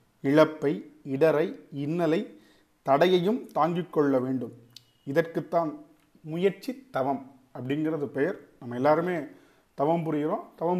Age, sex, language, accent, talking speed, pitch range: 40-59, male, Tamil, native, 95 wpm, 135-170 Hz